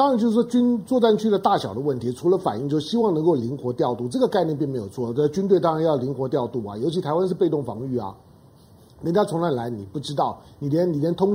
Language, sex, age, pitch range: Chinese, male, 50-69, 135-200 Hz